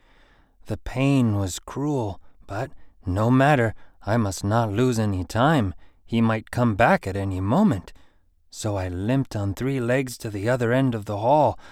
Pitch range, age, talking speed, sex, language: 90-120 Hz, 30-49, 170 wpm, male, English